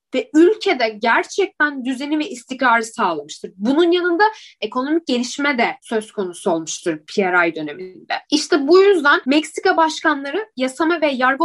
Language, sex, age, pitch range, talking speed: Turkish, female, 10-29, 255-370 Hz, 130 wpm